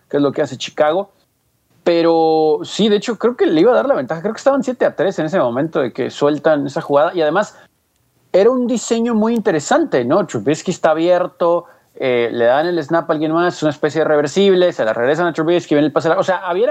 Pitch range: 150-195 Hz